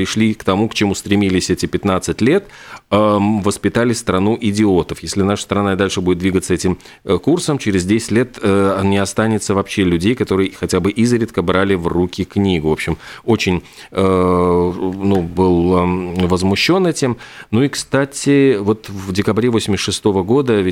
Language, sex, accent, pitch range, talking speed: Russian, male, native, 90-105 Hz, 155 wpm